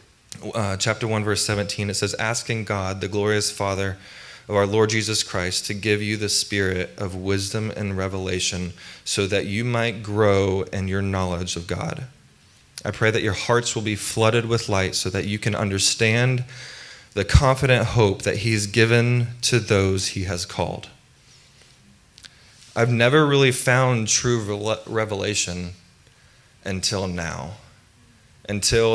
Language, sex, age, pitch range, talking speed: English, male, 20-39, 95-110 Hz, 145 wpm